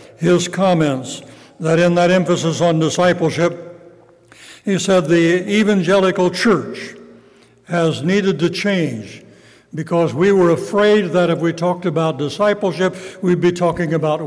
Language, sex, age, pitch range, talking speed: English, male, 60-79, 165-190 Hz, 130 wpm